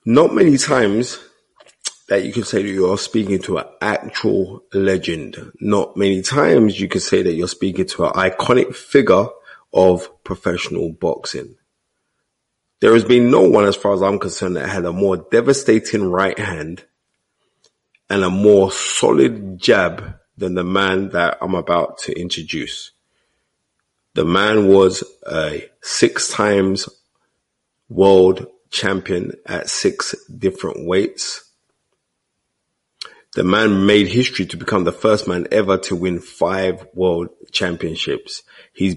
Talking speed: 135 wpm